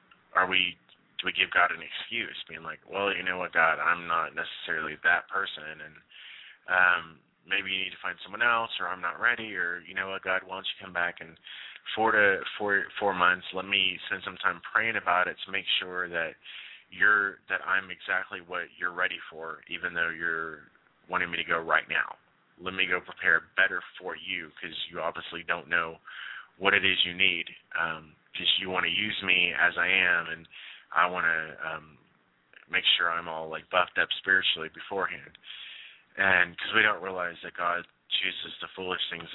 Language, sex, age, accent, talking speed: English, male, 20-39, American, 195 wpm